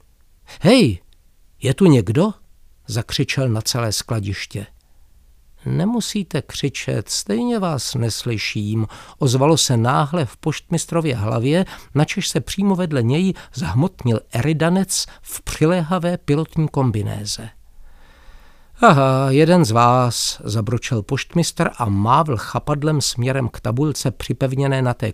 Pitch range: 105-155 Hz